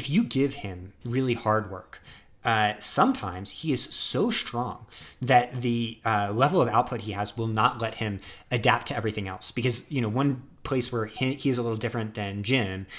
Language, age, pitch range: English, 30-49, 105-125 Hz